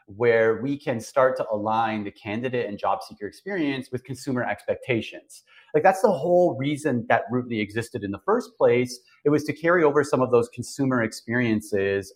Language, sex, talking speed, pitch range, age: English, male, 185 wpm, 105-135 Hz, 30-49